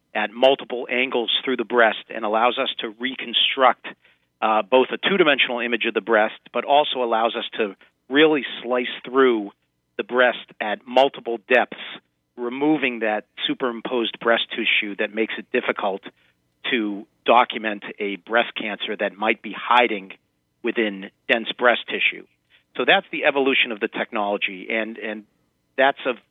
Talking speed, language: 150 wpm, English